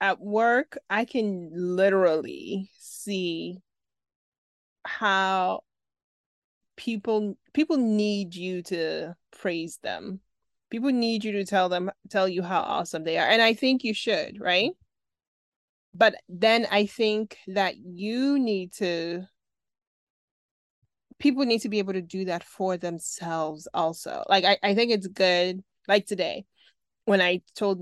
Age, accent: 20-39, American